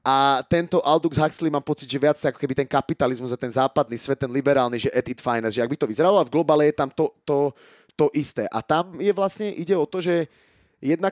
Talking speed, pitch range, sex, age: 235 wpm, 140-170 Hz, male, 30-49